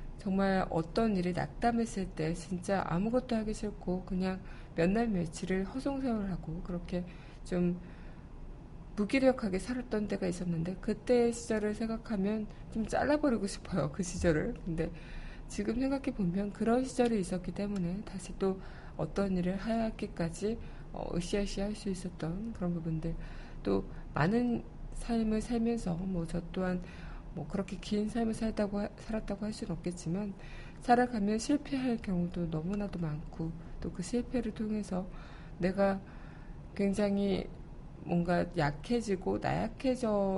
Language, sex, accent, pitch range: Korean, female, native, 175-215 Hz